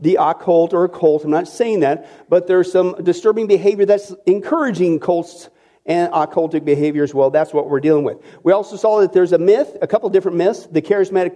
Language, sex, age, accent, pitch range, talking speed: English, male, 50-69, American, 150-225 Hz, 205 wpm